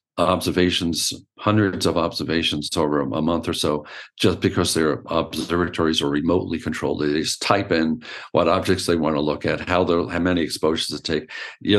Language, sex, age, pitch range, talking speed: English, male, 50-69, 80-105 Hz, 175 wpm